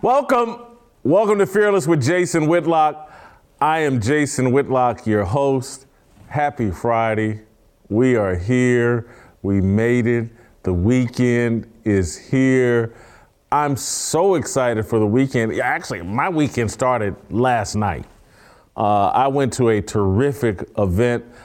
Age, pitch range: 40-59, 105-130 Hz